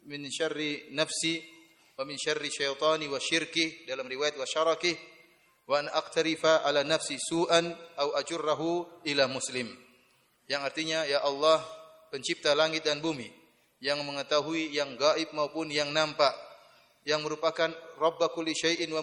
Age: 30-49